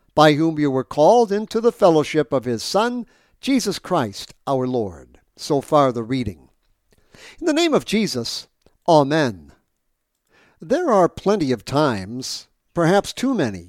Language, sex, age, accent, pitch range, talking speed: English, male, 60-79, American, 125-170 Hz, 145 wpm